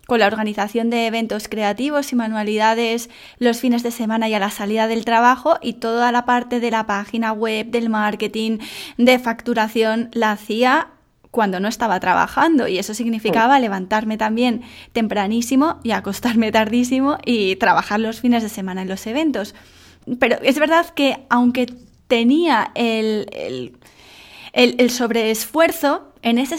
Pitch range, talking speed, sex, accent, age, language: 225-280 Hz, 150 wpm, female, Spanish, 10-29, English